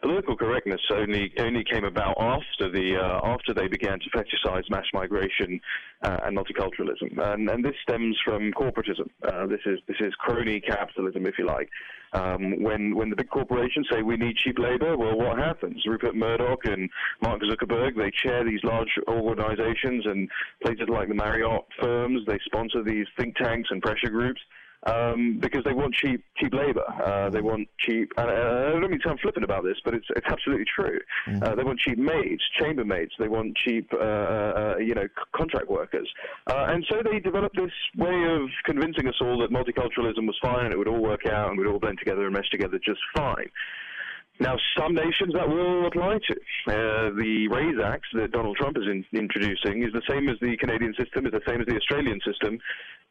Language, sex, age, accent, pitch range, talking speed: English, male, 20-39, British, 105-125 Hz, 200 wpm